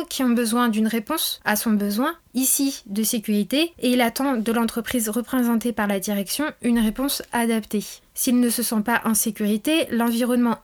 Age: 20-39